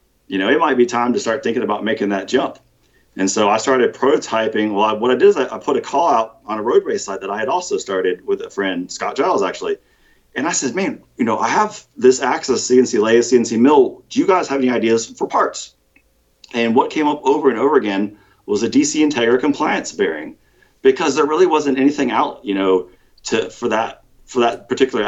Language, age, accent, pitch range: English, 40-59, American, 100-140 Hz